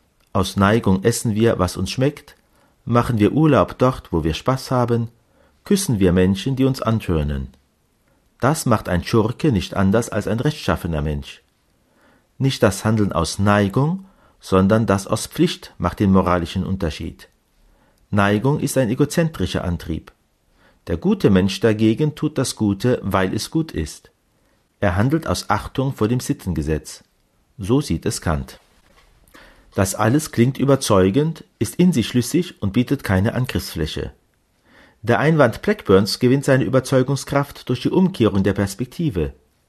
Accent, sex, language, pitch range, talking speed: German, male, German, 95-130 Hz, 140 wpm